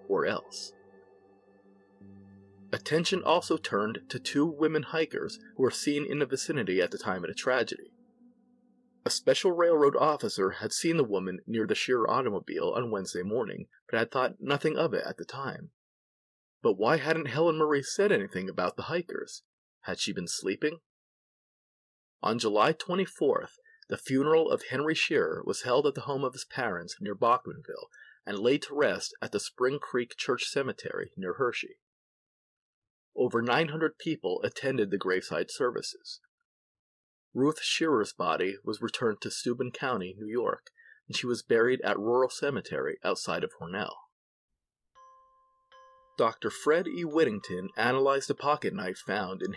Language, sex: English, male